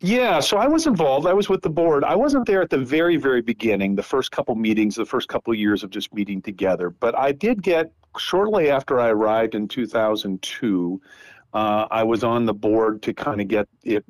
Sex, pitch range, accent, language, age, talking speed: male, 105-140 Hz, American, English, 50-69, 220 wpm